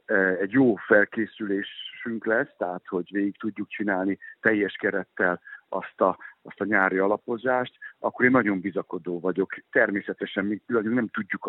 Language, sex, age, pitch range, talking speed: Hungarian, male, 60-79, 90-110 Hz, 135 wpm